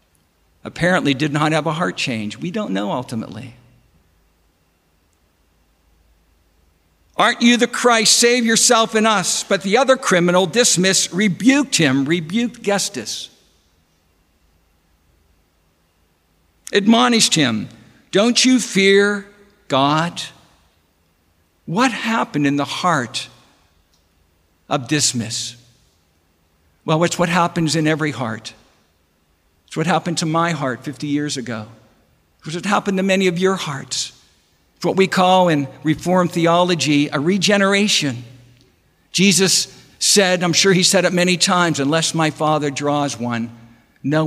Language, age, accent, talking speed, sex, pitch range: English, 60-79, American, 120 wpm, male, 110-180 Hz